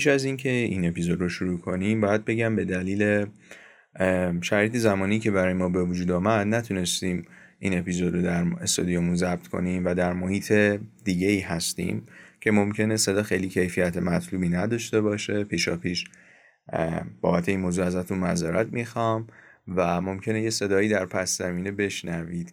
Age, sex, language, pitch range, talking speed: 30-49, male, Persian, 90-115 Hz, 155 wpm